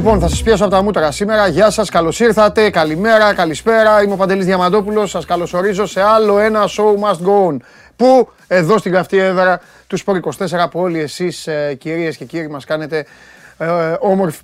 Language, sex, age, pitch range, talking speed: Greek, male, 30-49, 155-195 Hz, 185 wpm